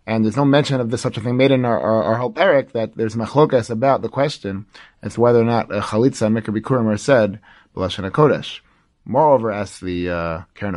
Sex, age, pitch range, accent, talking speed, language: male, 30-49, 110-135 Hz, American, 215 wpm, English